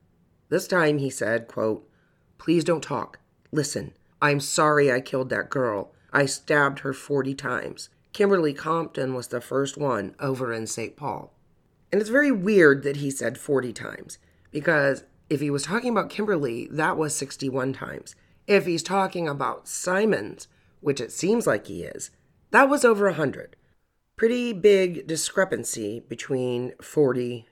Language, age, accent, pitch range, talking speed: English, 40-59, American, 135-170 Hz, 155 wpm